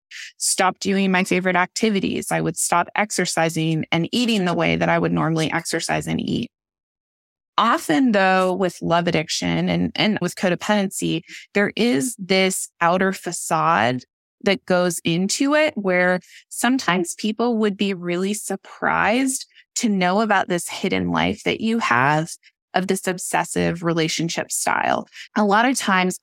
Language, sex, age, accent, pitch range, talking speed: English, female, 20-39, American, 170-210 Hz, 145 wpm